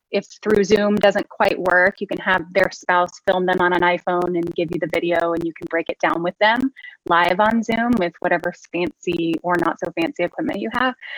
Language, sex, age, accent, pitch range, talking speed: English, female, 20-39, American, 180-220 Hz, 225 wpm